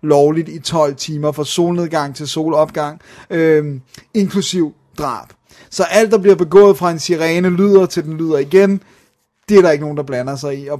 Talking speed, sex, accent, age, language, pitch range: 190 wpm, male, native, 30-49, Danish, 145-175 Hz